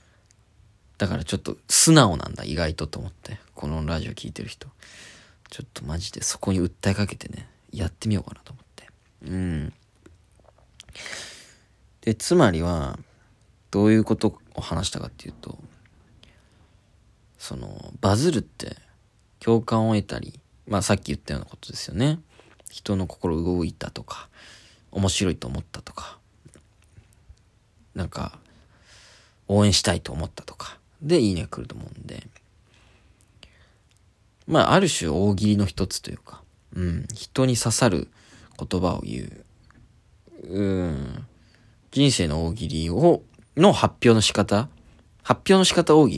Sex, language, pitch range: male, Japanese, 90-110 Hz